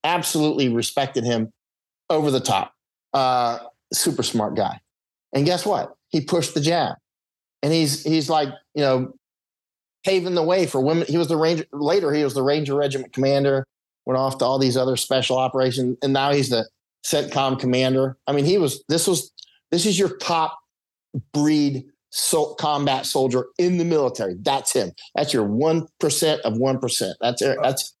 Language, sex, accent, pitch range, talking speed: English, male, American, 130-155 Hz, 175 wpm